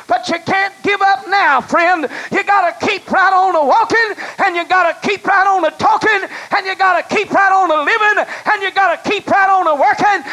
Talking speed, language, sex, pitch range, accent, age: 210 wpm, English, male, 320-385 Hz, American, 50-69